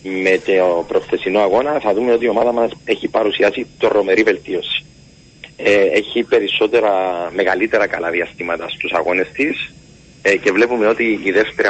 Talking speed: 150 wpm